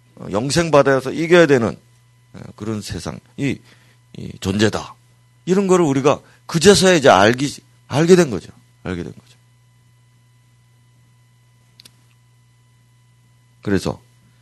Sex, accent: male, native